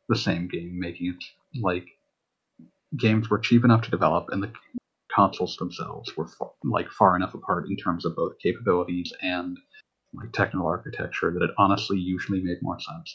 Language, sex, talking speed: English, male, 175 wpm